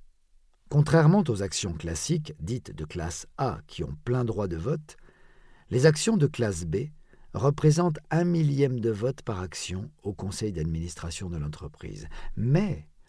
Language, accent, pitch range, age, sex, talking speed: French, French, 85-130 Hz, 50-69, male, 145 wpm